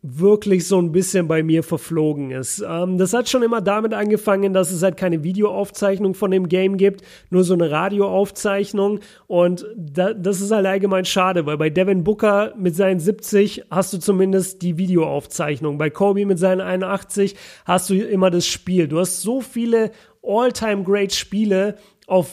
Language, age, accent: German, 40-59, German